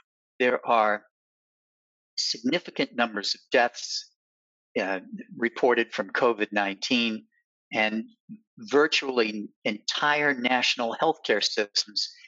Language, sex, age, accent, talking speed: English, male, 50-69, American, 85 wpm